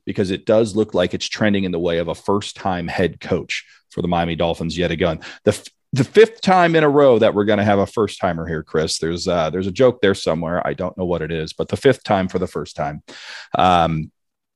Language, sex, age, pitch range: English, male, 40-59, 90-110 Hz